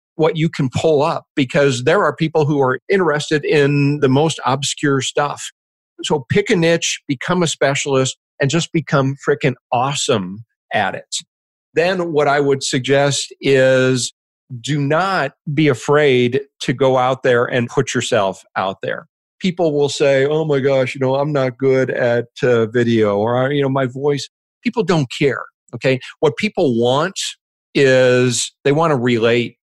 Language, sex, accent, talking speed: English, male, American, 165 wpm